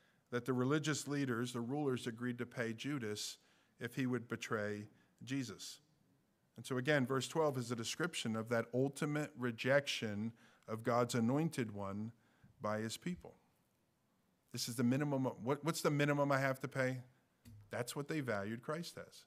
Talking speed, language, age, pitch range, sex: 160 wpm, English, 50-69, 130-165 Hz, male